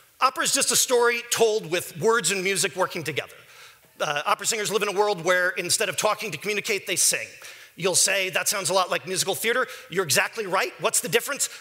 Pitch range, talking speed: 190-240 Hz, 215 wpm